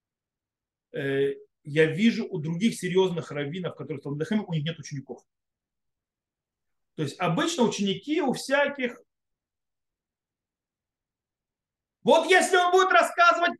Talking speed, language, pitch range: 100 wpm, Russian, 165-235 Hz